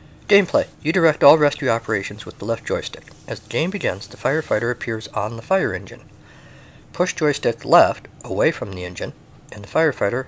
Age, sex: 50-69, male